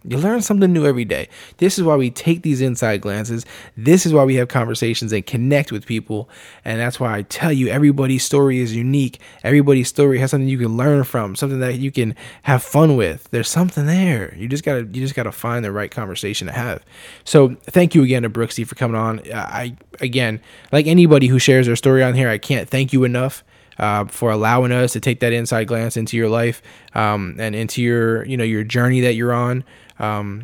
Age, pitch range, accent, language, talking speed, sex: 10-29, 110-135 Hz, American, English, 220 wpm, male